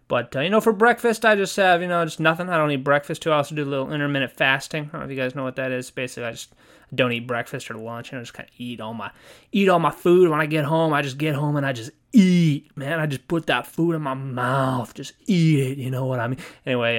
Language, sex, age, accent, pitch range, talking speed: English, male, 20-39, American, 135-170 Hz, 305 wpm